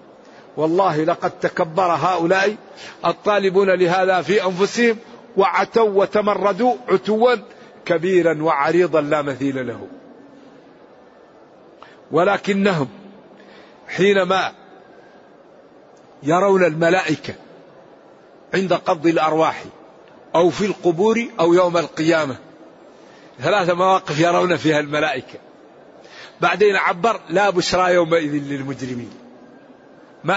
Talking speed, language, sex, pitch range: 80 wpm, Arabic, male, 165-210 Hz